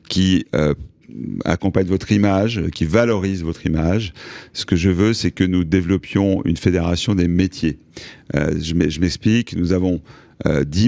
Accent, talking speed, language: French, 150 wpm, French